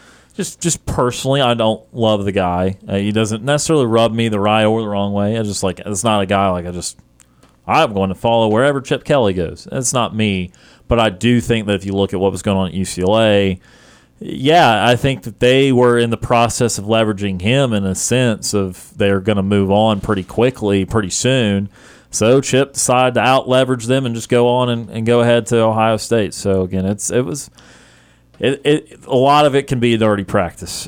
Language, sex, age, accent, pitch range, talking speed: English, male, 30-49, American, 100-120 Hz, 220 wpm